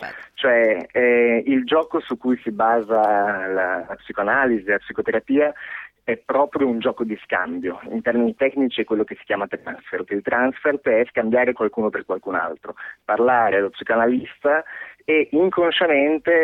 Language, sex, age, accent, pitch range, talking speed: Italian, male, 30-49, native, 115-145 Hz, 145 wpm